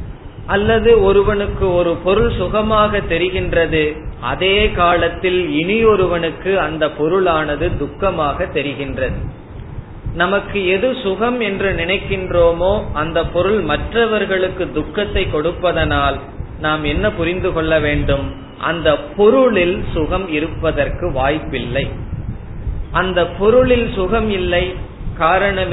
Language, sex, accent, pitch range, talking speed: Tamil, male, native, 150-200 Hz, 85 wpm